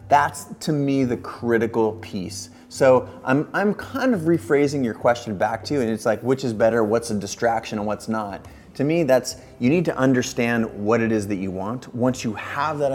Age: 30-49